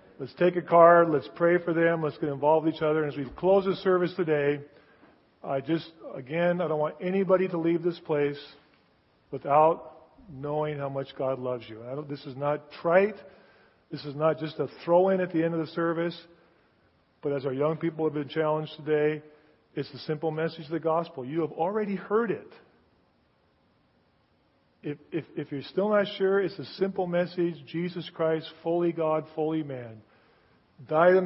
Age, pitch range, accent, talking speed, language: 40-59, 145-170 Hz, American, 180 wpm, English